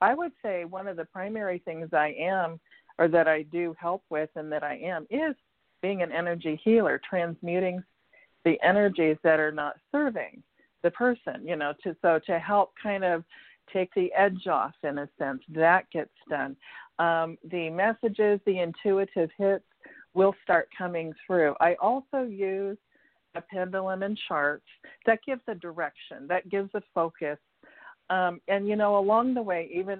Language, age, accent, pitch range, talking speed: English, 50-69, American, 165-200 Hz, 170 wpm